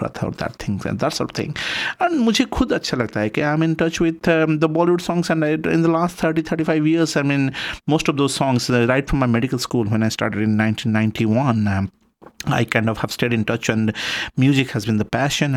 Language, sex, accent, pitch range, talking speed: Hindi, male, native, 110-145 Hz, 240 wpm